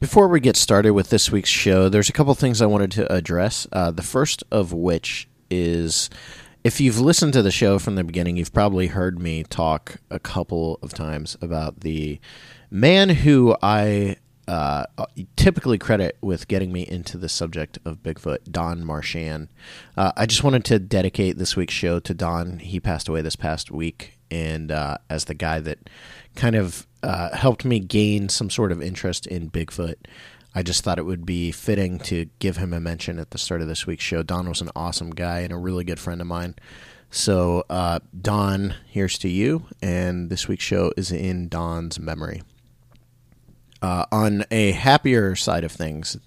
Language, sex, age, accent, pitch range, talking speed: English, male, 30-49, American, 85-105 Hz, 190 wpm